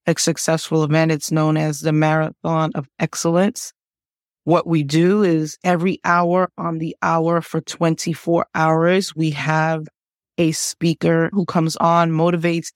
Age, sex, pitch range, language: 30-49, female, 160-175 Hz, English